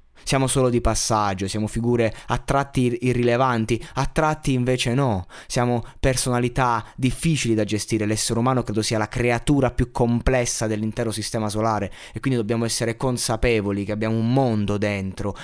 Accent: native